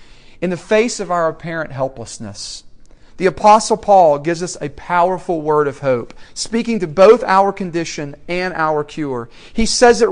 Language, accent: English, American